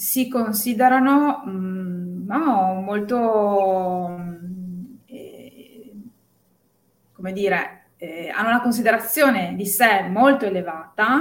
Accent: native